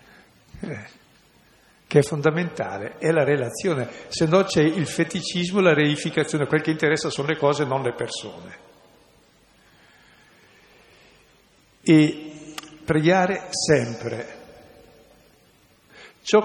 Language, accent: Italian, native